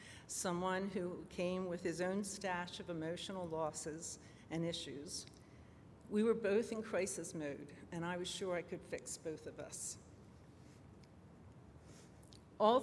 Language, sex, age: English, female, 60-79